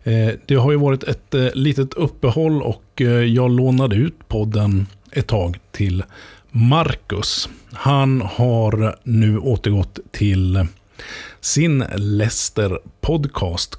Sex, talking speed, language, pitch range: male, 100 wpm, Swedish, 95-135 Hz